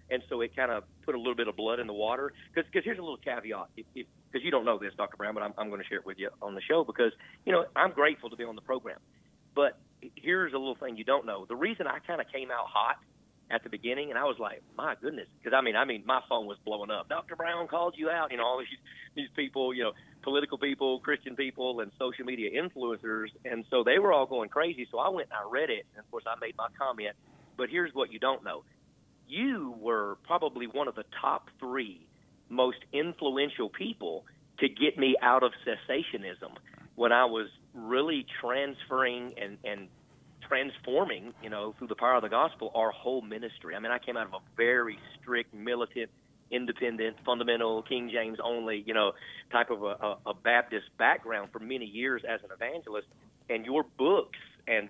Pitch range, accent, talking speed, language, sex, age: 110-140 Hz, American, 215 wpm, English, male, 40-59